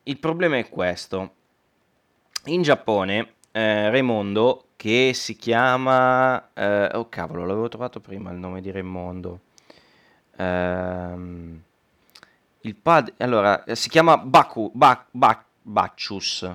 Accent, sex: native, male